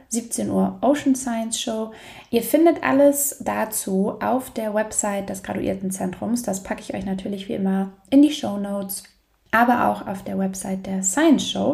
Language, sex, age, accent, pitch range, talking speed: German, female, 20-39, German, 200-255 Hz, 165 wpm